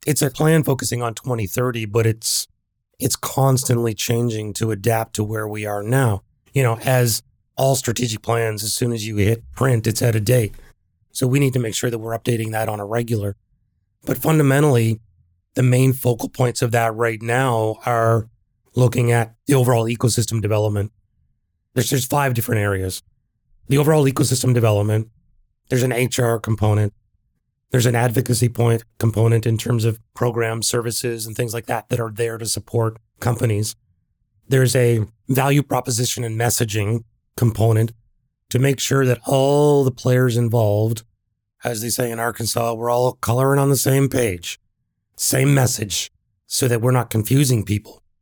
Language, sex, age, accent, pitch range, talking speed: English, male, 30-49, American, 110-125 Hz, 165 wpm